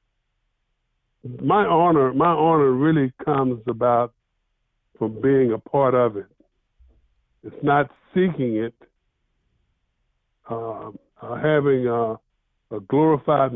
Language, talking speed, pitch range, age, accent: English, 95 wpm, 115-150 Hz, 60-79, American